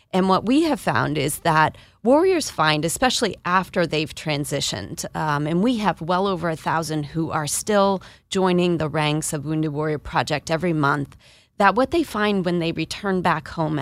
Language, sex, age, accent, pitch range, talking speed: English, female, 30-49, American, 155-190 Hz, 180 wpm